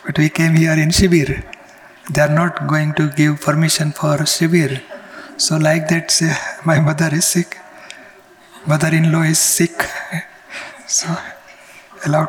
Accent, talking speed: native, 145 wpm